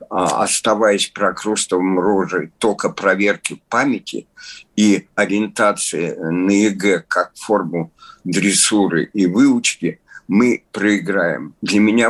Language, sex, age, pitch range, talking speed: Russian, male, 50-69, 90-105 Hz, 95 wpm